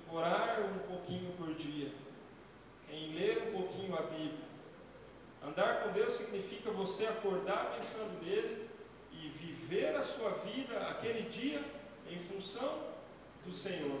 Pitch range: 185-245 Hz